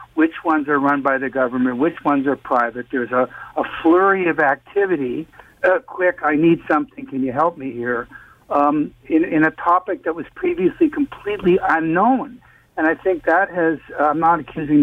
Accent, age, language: American, 60-79, English